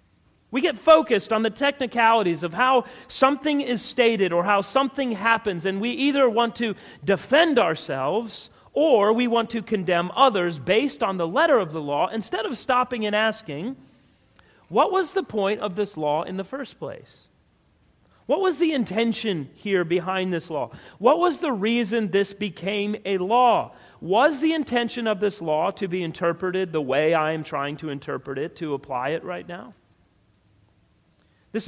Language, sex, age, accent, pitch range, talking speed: English, male, 40-59, American, 165-235 Hz, 170 wpm